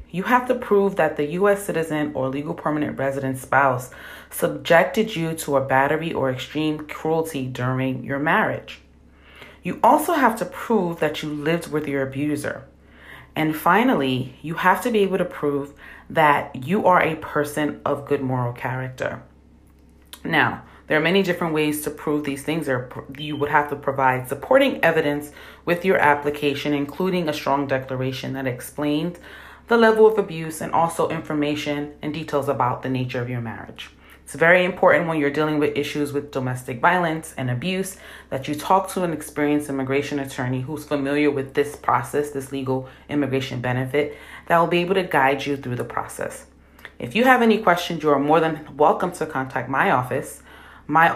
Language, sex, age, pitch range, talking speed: English, female, 30-49, 135-165 Hz, 175 wpm